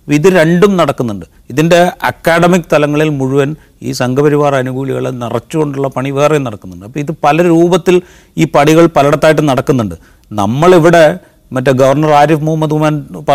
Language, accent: English, Indian